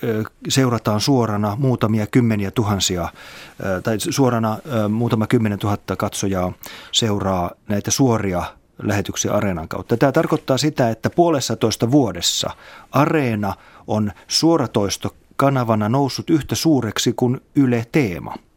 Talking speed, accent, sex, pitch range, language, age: 110 wpm, native, male, 105-125 Hz, Finnish, 30-49